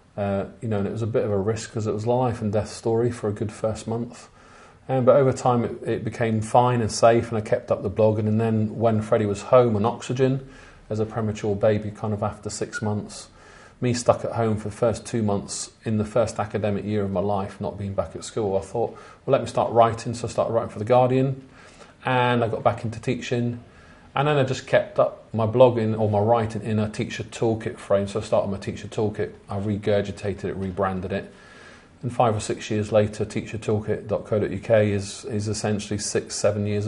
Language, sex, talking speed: English, male, 225 wpm